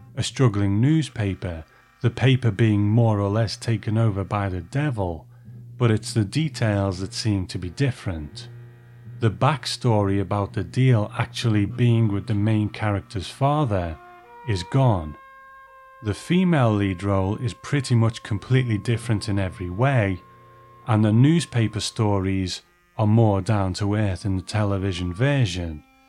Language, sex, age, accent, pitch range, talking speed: English, male, 30-49, British, 100-130 Hz, 145 wpm